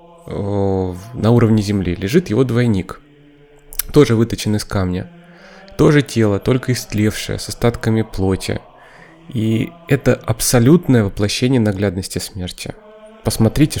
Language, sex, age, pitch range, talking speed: Russian, male, 20-39, 100-135 Hz, 105 wpm